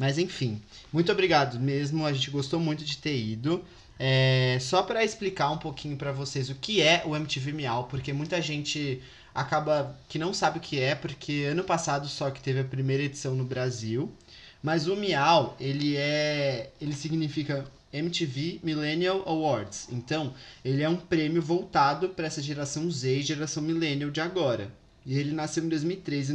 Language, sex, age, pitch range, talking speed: Portuguese, male, 20-39, 135-165 Hz, 175 wpm